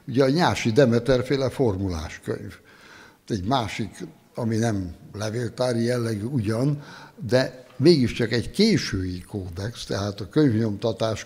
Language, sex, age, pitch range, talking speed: Hungarian, male, 60-79, 105-140 Hz, 110 wpm